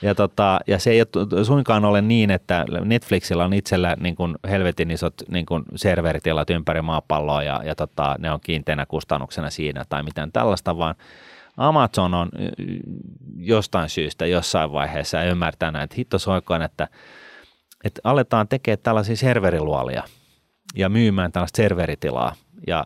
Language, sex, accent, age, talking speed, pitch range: Finnish, male, native, 30-49, 145 wpm, 80-105 Hz